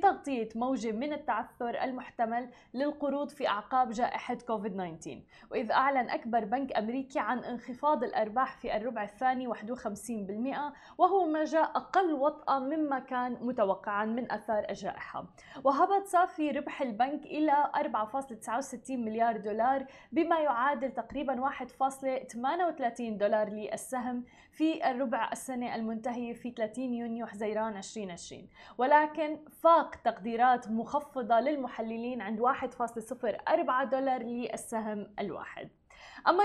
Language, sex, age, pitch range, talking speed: Arabic, female, 20-39, 230-295 Hz, 110 wpm